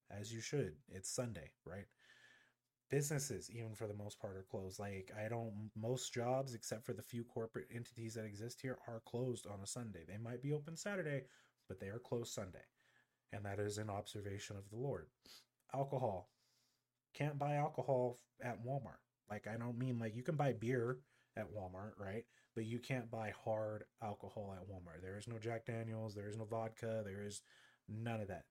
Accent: American